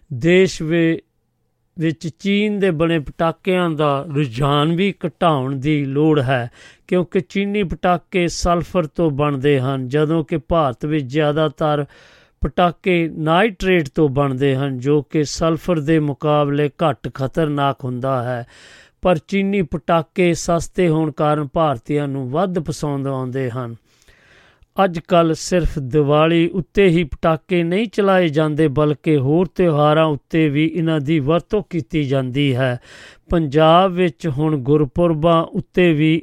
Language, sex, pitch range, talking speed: Punjabi, male, 145-175 Hz, 130 wpm